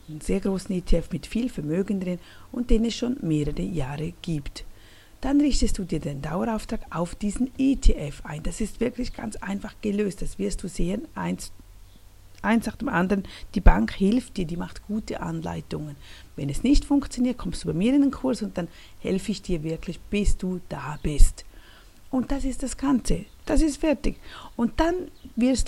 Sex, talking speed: female, 185 wpm